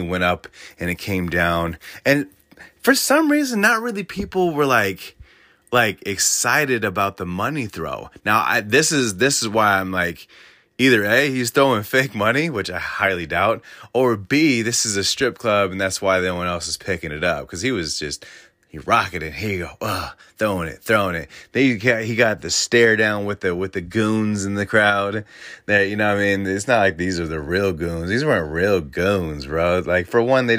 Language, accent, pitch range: English, American, 90-120 Hz